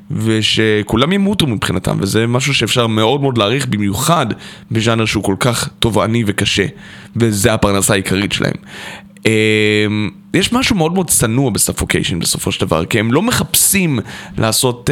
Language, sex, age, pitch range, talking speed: Hebrew, male, 20-39, 100-130 Hz, 140 wpm